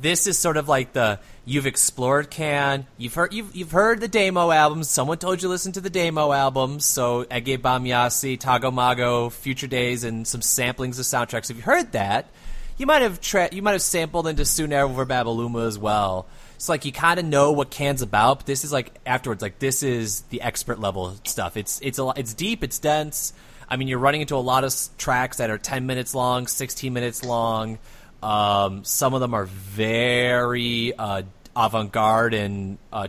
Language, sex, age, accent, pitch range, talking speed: English, male, 30-49, American, 110-140 Hz, 200 wpm